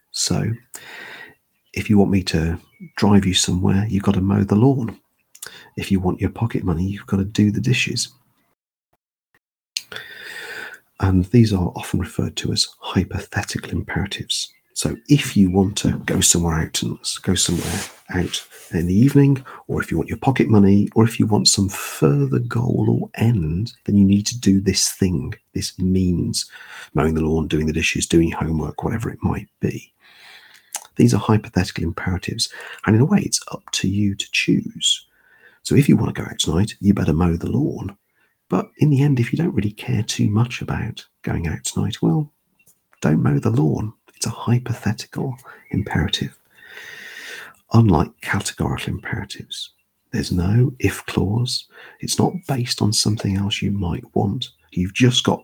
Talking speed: 170 wpm